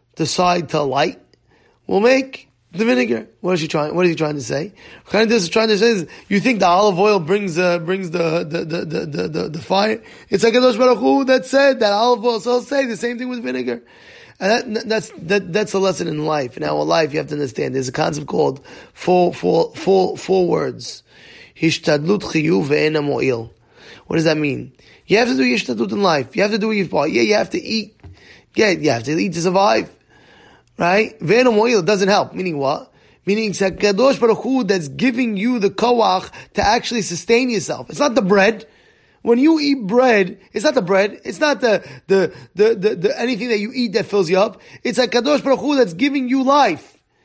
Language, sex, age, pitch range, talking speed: English, male, 20-39, 170-235 Hz, 215 wpm